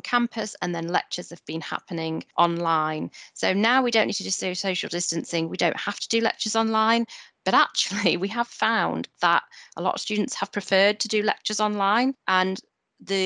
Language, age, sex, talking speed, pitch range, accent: English, 30-49, female, 190 wpm, 170-205 Hz, British